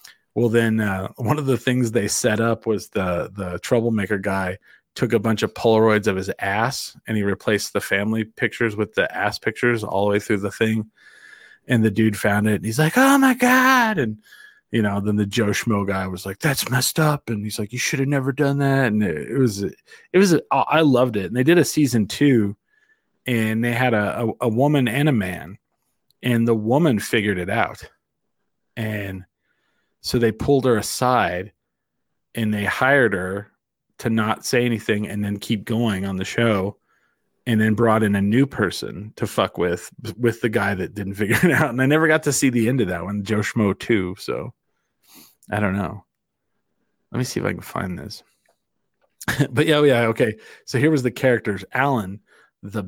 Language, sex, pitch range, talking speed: English, male, 105-125 Hz, 205 wpm